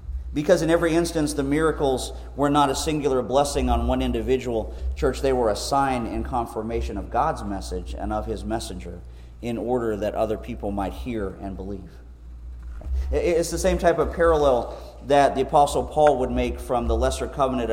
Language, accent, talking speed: English, American, 180 wpm